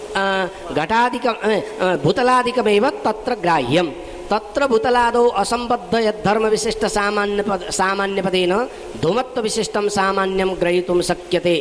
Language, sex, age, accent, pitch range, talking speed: English, female, 40-59, Indian, 190-240 Hz, 90 wpm